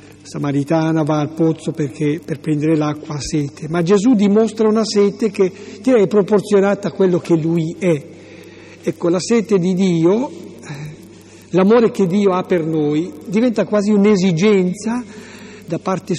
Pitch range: 155-200 Hz